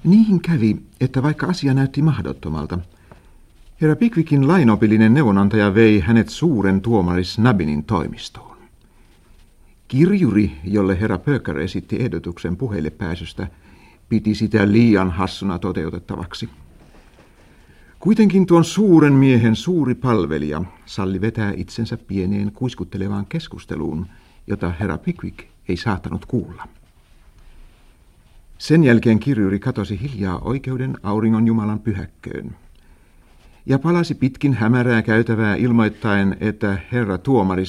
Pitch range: 95-125 Hz